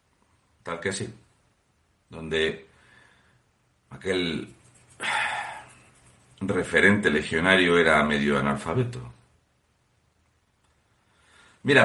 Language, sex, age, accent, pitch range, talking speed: Spanish, male, 60-79, Spanish, 85-115 Hz, 55 wpm